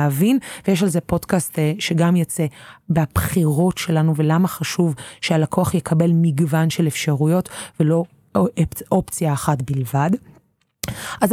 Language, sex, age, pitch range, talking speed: Hebrew, female, 30-49, 155-180 Hz, 105 wpm